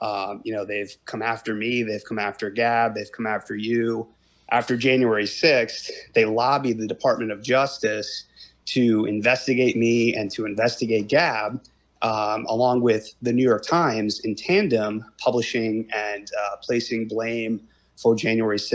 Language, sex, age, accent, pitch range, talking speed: English, male, 30-49, American, 105-120 Hz, 150 wpm